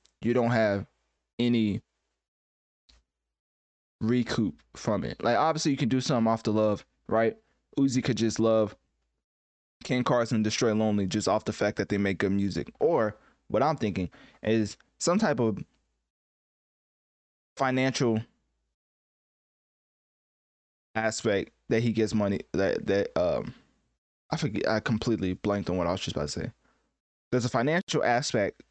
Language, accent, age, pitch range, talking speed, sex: English, American, 20-39, 100-120 Hz, 145 wpm, male